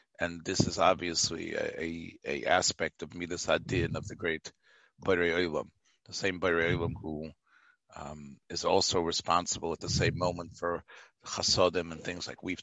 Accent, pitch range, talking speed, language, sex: American, 80-100 Hz, 165 wpm, English, male